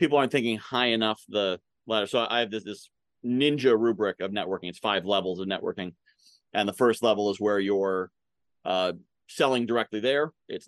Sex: male